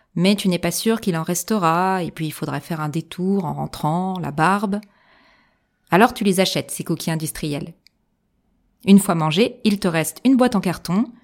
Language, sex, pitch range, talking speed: French, female, 175-230 Hz, 190 wpm